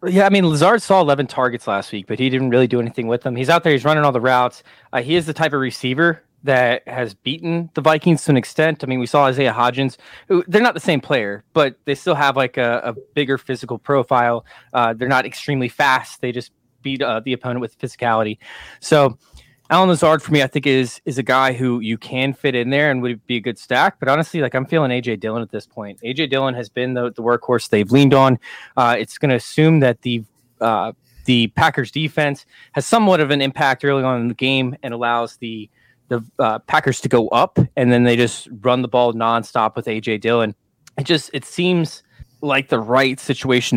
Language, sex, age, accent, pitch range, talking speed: English, male, 20-39, American, 120-145 Hz, 230 wpm